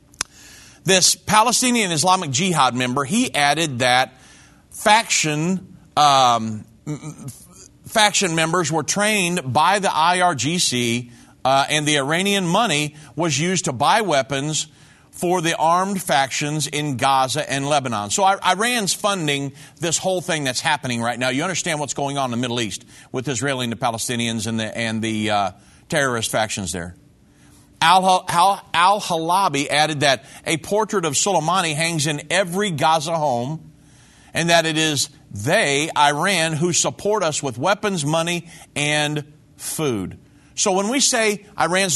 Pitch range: 135-180 Hz